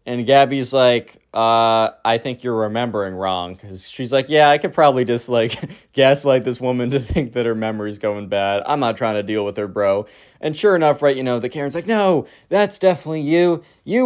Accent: American